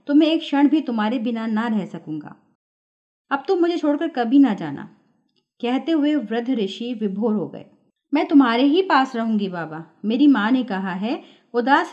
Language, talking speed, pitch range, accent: Hindi, 180 wpm, 200-280 Hz, native